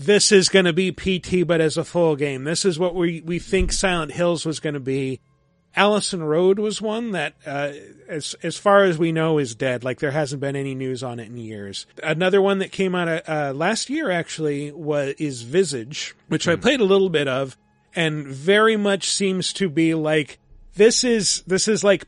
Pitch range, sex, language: 145-185 Hz, male, English